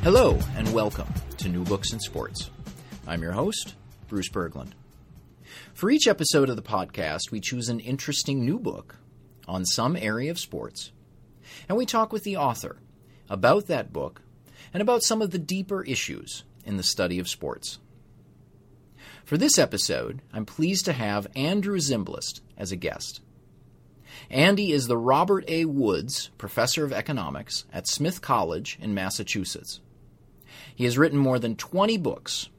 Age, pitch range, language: 40-59, 110-160 Hz, English